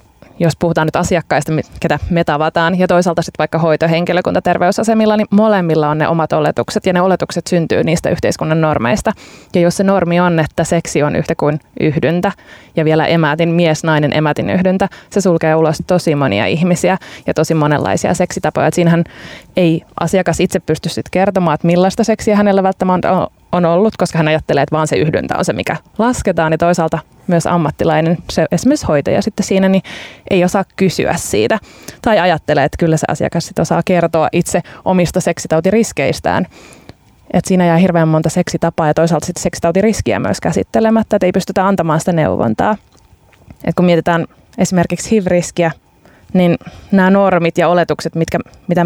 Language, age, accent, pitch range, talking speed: Finnish, 20-39, native, 160-185 Hz, 165 wpm